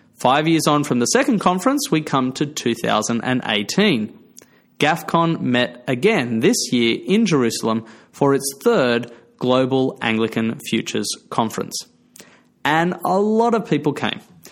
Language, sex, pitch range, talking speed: English, male, 125-185 Hz, 130 wpm